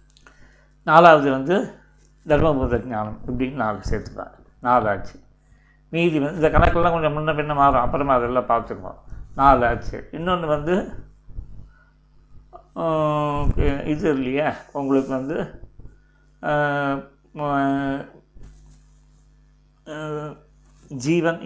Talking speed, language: 75 wpm, Tamil